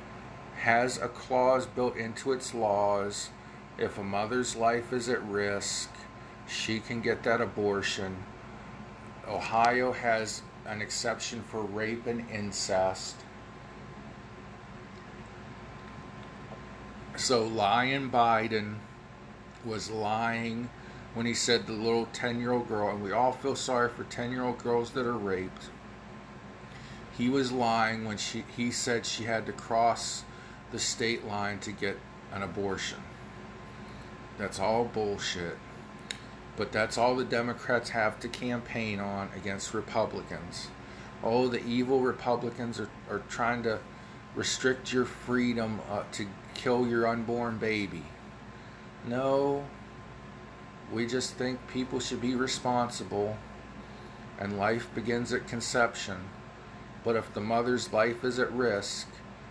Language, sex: English, male